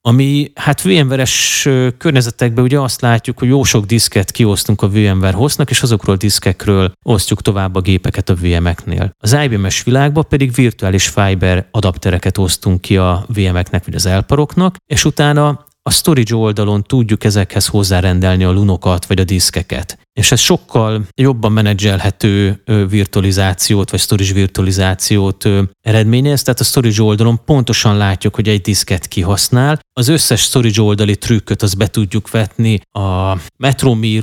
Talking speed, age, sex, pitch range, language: 145 wpm, 30-49, male, 100-125 Hz, Hungarian